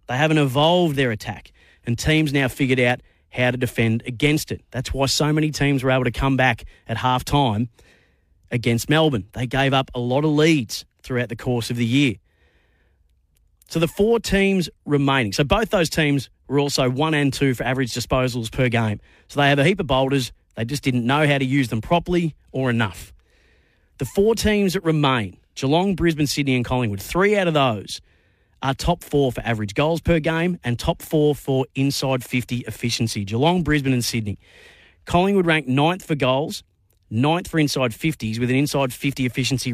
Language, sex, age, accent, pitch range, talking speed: English, male, 30-49, Australian, 115-150 Hz, 190 wpm